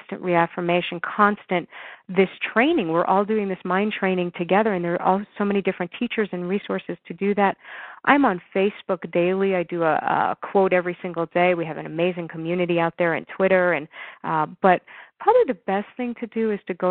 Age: 40-59